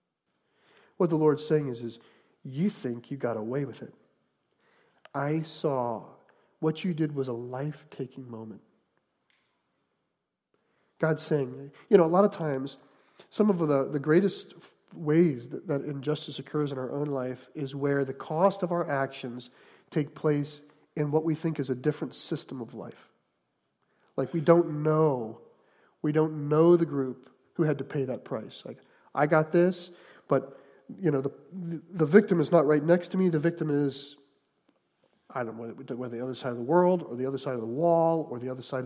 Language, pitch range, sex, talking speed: English, 135-170 Hz, male, 180 wpm